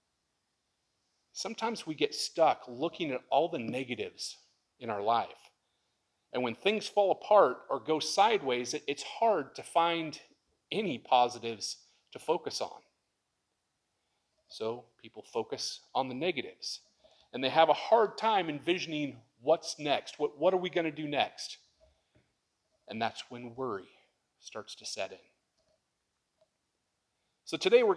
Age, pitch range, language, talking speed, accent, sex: 40-59, 120-170 Hz, English, 135 wpm, American, male